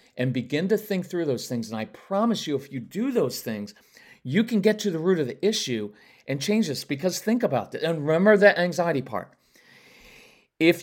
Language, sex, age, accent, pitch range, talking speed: English, male, 40-59, American, 125-165 Hz, 210 wpm